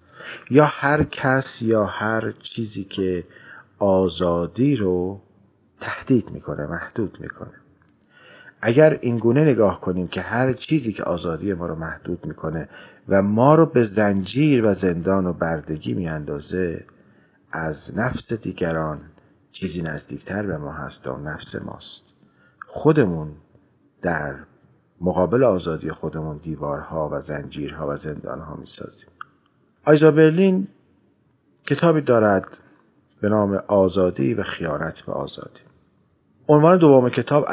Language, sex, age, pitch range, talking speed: Persian, male, 40-59, 85-120 Hz, 115 wpm